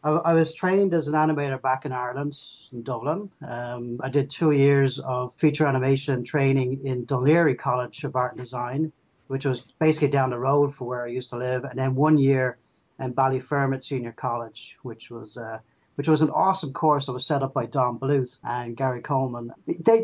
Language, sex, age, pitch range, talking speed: English, male, 40-59, 125-155 Hz, 200 wpm